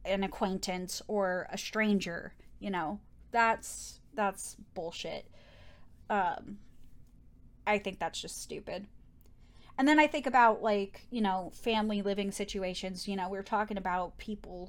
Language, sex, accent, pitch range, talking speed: English, female, American, 195-225 Hz, 135 wpm